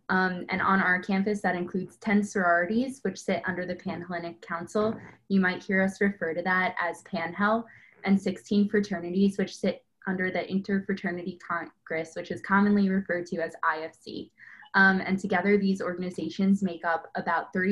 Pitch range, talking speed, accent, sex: 175-205 Hz, 165 wpm, American, female